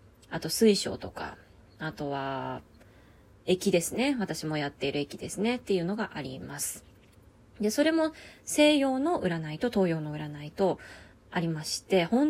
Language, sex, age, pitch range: Japanese, female, 20-39, 155-245 Hz